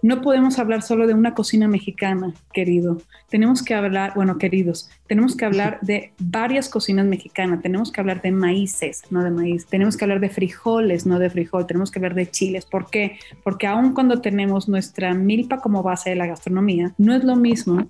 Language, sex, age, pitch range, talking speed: Spanish, female, 30-49, 185-225 Hz, 200 wpm